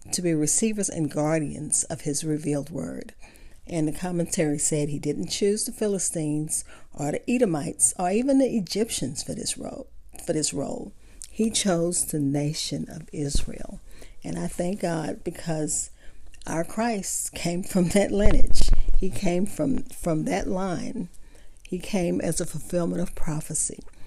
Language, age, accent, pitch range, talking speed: English, 50-69, American, 155-195 Hz, 150 wpm